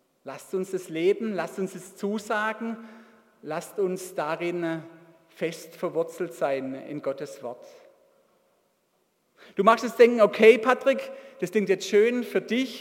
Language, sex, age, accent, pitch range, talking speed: German, male, 40-59, German, 170-230 Hz, 135 wpm